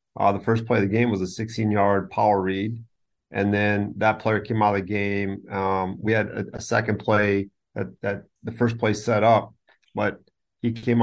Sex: male